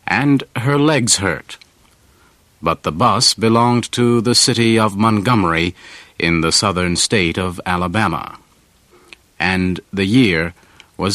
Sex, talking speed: male, 125 wpm